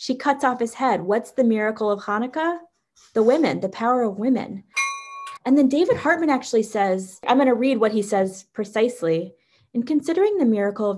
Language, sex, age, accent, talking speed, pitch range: English, female, 20-39, American, 190 wpm, 180-240 Hz